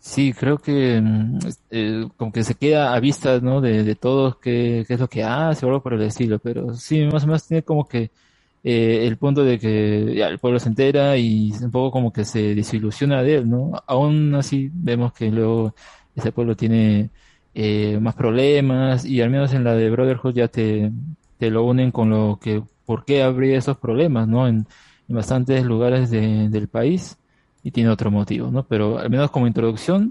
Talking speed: 205 wpm